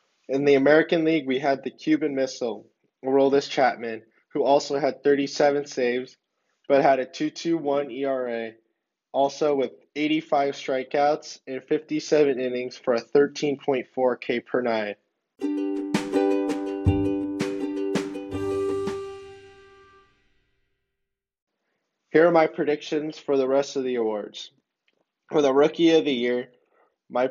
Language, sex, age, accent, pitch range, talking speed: English, male, 20-39, American, 125-150 Hz, 110 wpm